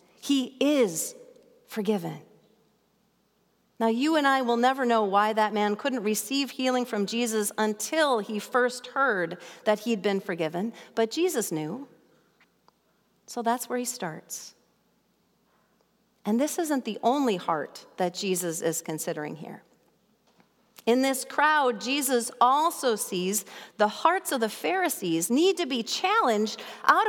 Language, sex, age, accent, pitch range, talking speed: English, female, 40-59, American, 215-290 Hz, 135 wpm